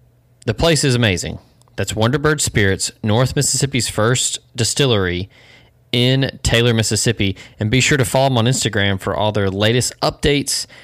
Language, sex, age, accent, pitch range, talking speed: English, male, 20-39, American, 105-125 Hz, 150 wpm